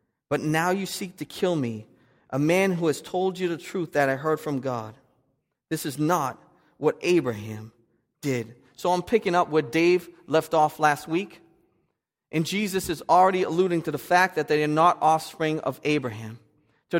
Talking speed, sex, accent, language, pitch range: 185 wpm, male, American, English, 145-185 Hz